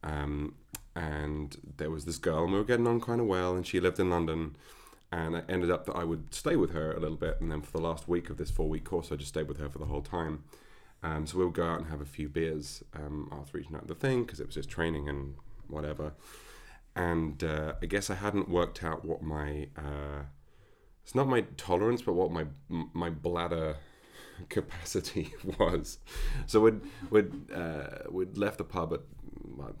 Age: 30-49